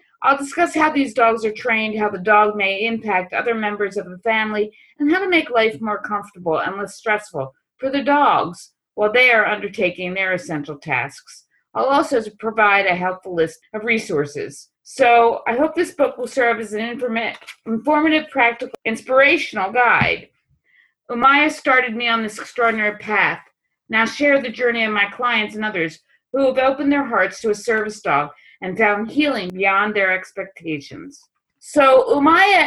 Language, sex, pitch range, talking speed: English, female, 205-270 Hz, 165 wpm